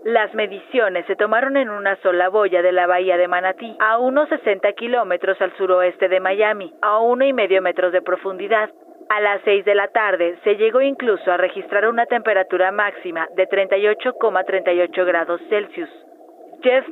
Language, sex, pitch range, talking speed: Spanish, female, 185-235 Hz, 165 wpm